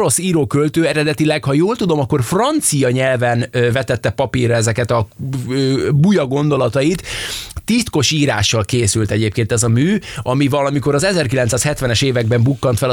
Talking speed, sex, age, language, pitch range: 135 wpm, male, 20-39, Hungarian, 120-155 Hz